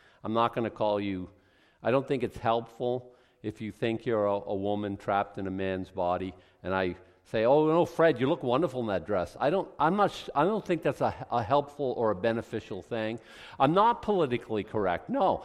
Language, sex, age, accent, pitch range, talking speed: English, male, 50-69, American, 115-180 Hz, 215 wpm